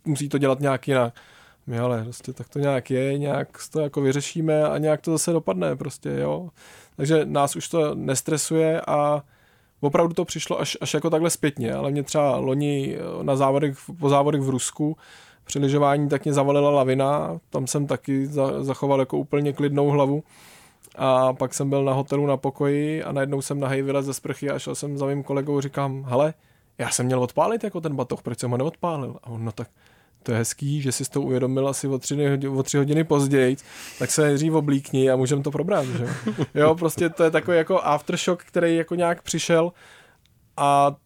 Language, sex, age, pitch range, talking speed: Czech, male, 20-39, 135-155 Hz, 185 wpm